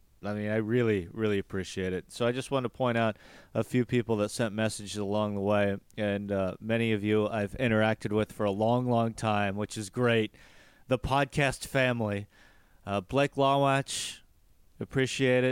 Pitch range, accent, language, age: 105-130 Hz, American, English, 30-49